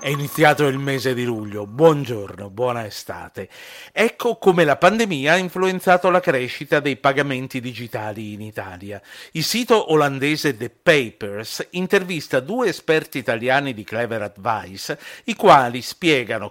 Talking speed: 135 wpm